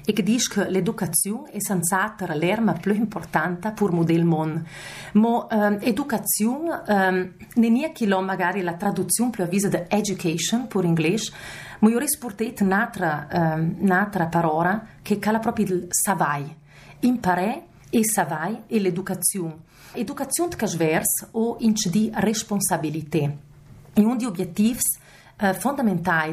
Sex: female